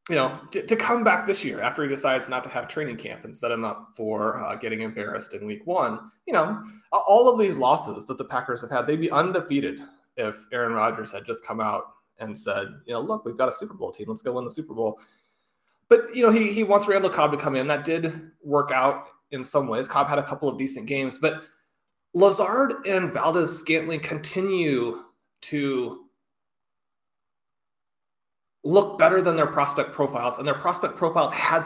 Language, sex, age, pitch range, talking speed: English, male, 20-39, 135-195 Hz, 205 wpm